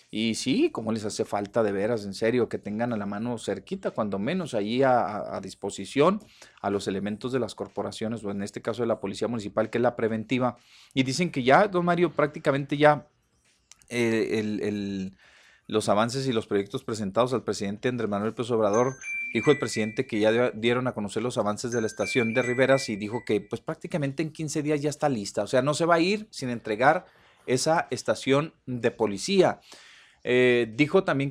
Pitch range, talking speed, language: 115-155 Hz, 195 wpm, Spanish